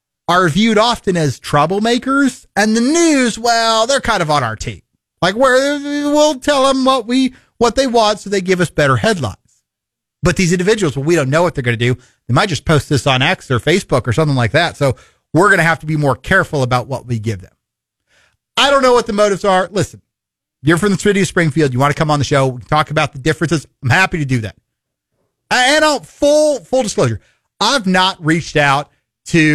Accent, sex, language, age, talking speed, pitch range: American, male, English, 40-59, 225 wpm, 145-225 Hz